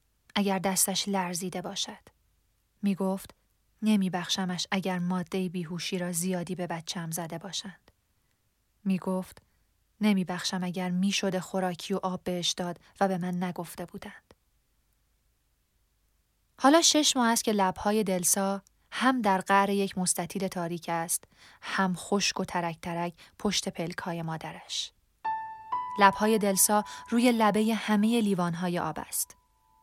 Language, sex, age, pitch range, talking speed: Persian, female, 30-49, 170-200 Hz, 130 wpm